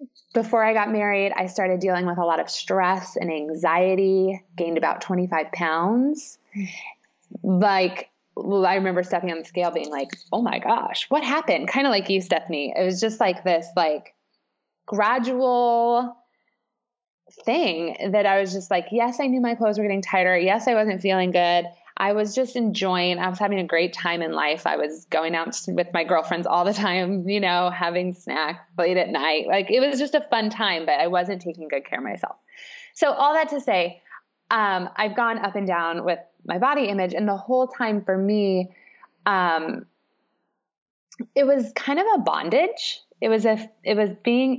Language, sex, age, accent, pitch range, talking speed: English, female, 20-39, American, 175-230 Hz, 190 wpm